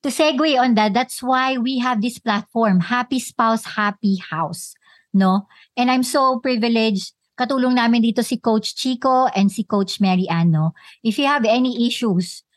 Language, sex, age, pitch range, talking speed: Filipino, male, 50-69, 210-265 Hz, 165 wpm